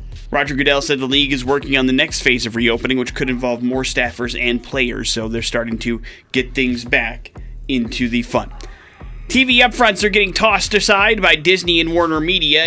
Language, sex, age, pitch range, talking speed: English, male, 30-49, 115-140 Hz, 195 wpm